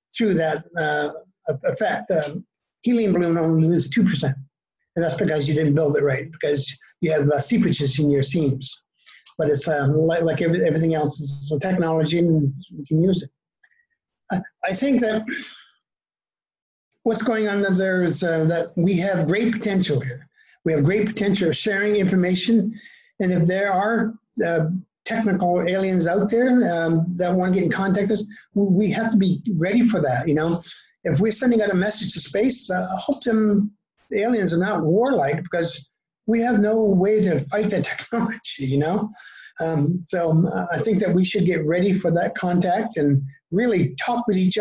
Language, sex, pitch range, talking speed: English, male, 155-210 Hz, 185 wpm